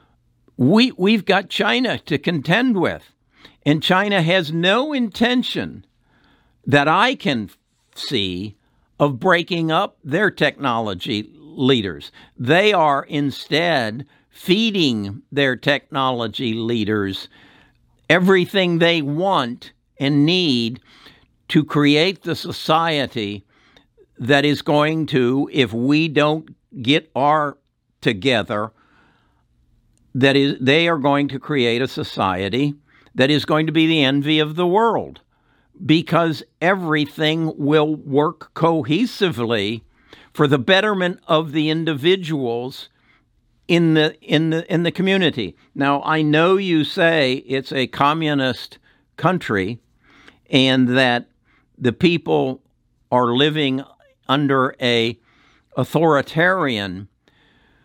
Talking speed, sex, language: 105 wpm, male, English